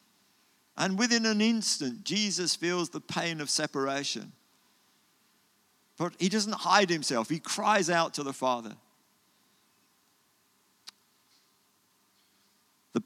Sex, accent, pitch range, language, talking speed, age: male, British, 130-175 Hz, English, 100 wpm, 50-69